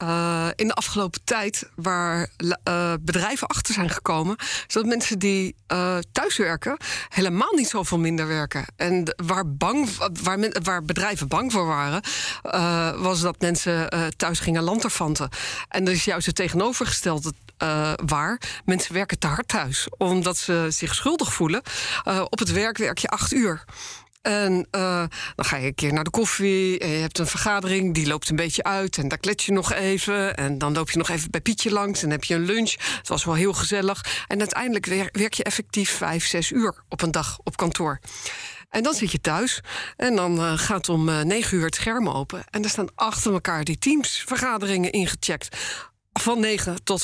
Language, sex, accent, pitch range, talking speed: Dutch, female, Dutch, 165-205 Hz, 195 wpm